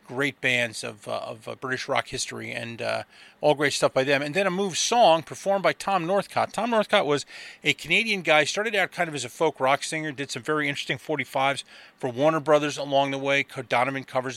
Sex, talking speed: male, 220 wpm